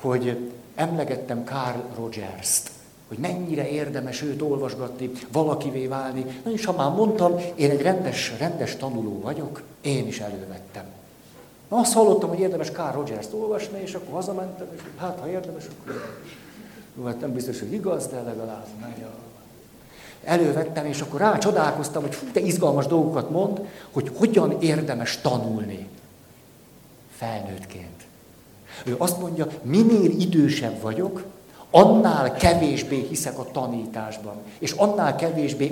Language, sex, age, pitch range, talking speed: Hungarian, male, 60-79, 125-175 Hz, 130 wpm